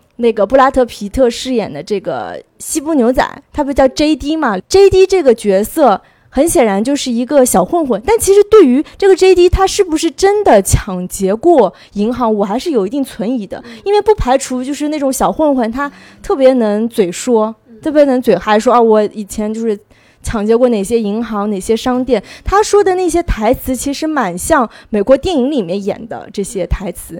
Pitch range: 215-290 Hz